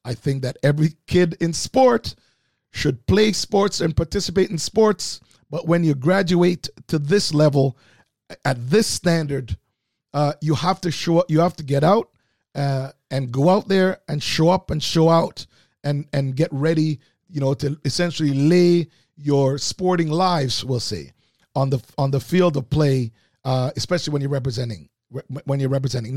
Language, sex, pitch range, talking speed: English, male, 125-170 Hz, 175 wpm